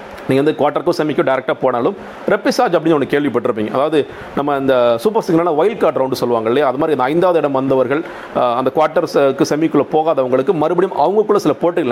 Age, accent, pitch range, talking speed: 40-59, native, 130-170 Hz, 165 wpm